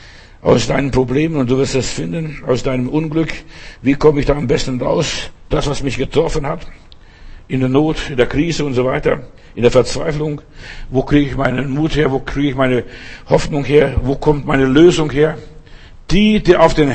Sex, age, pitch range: male, 60-79, 125-155 Hz